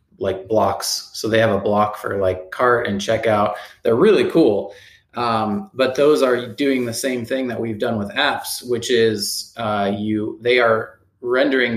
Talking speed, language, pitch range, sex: 180 wpm, English, 100-120 Hz, male